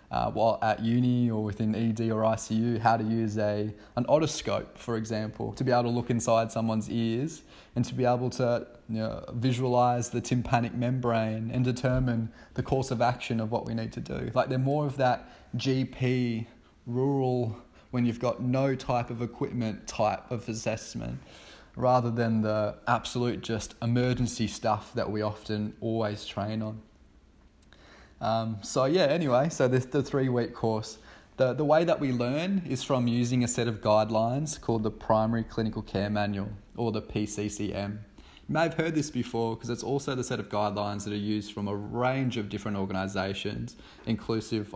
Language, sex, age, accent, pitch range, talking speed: English, male, 20-39, Australian, 105-125 Hz, 175 wpm